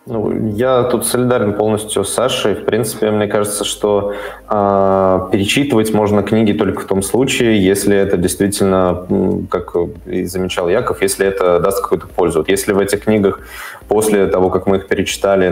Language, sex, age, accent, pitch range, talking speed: Russian, male, 20-39, native, 95-110 Hz, 165 wpm